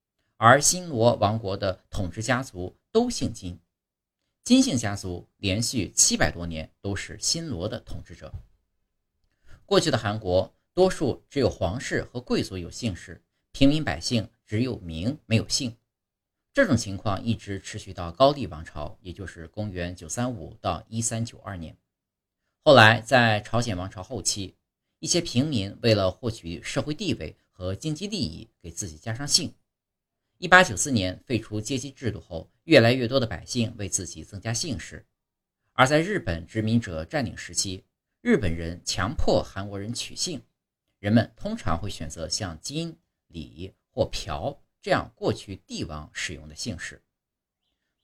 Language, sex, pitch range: Chinese, male, 90-120 Hz